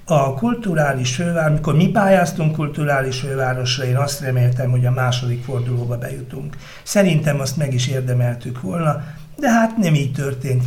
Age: 60-79